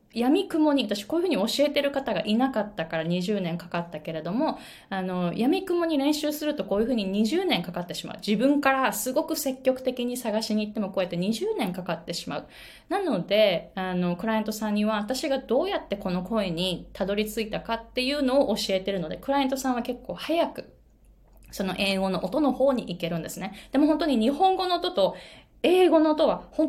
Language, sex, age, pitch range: Japanese, female, 20-39, 195-285 Hz